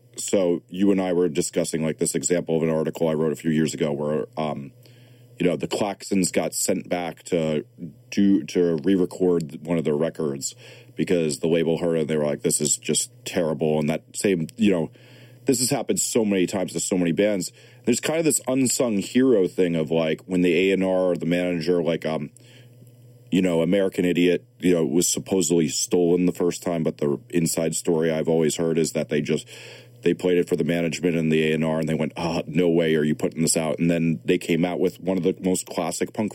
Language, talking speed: English, 225 wpm